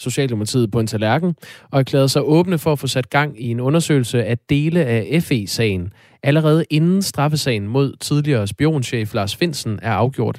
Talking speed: 165 wpm